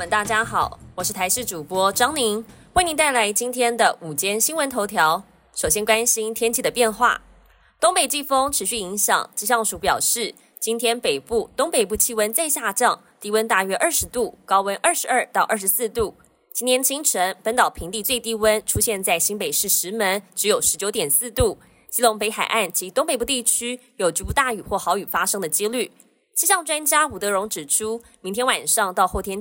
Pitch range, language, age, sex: 200-255 Hz, Chinese, 20-39, female